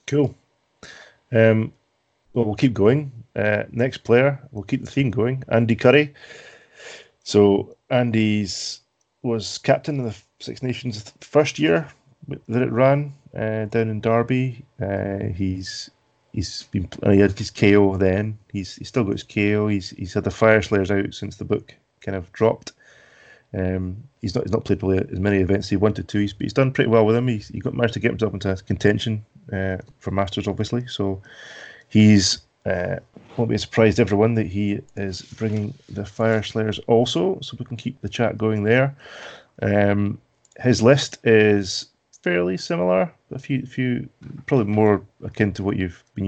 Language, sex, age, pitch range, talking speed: English, male, 30-49, 100-120 Hz, 175 wpm